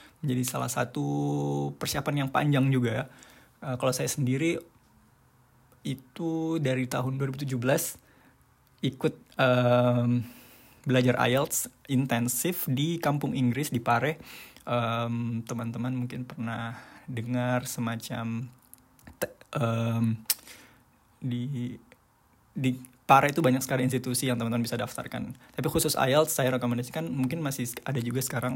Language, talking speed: Indonesian, 115 wpm